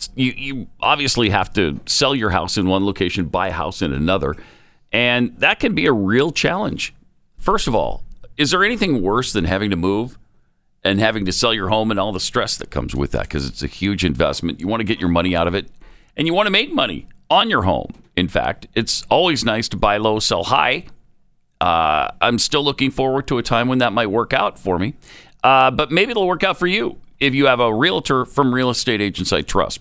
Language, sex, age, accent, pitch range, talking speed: English, male, 50-69, American, 100-135 Hz, 230 wpm